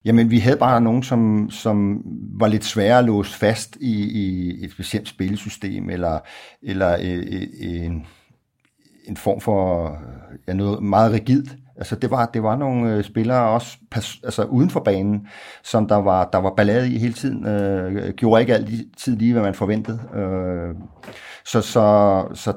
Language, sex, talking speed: Danish, male, 160 wpm